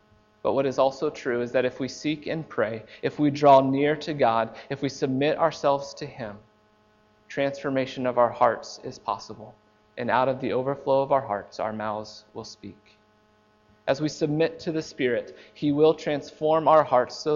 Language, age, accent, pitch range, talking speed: English, 30-49, American, 105-155 Hz, 185 wpm